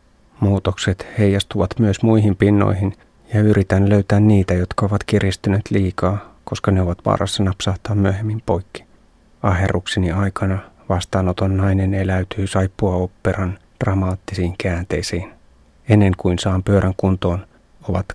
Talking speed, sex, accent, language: 115 wpm, male, native, Finnish